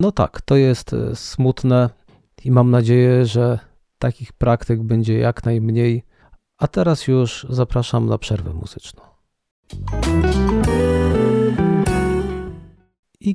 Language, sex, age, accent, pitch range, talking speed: Polish, male, 40-59, native, 110-135 Hz, 100 wpm